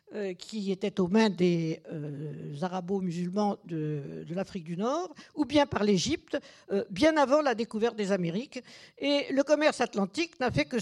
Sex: female